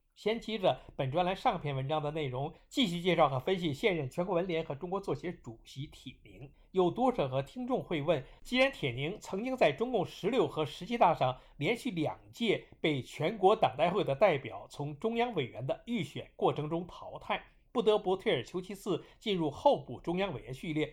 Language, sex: Chinese, male